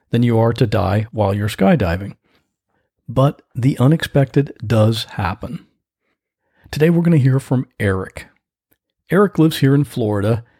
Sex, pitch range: male, 110-145 Hz